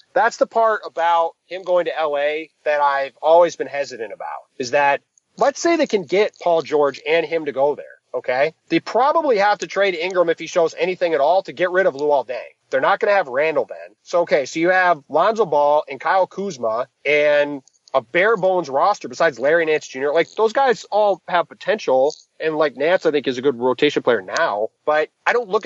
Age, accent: 30-49, American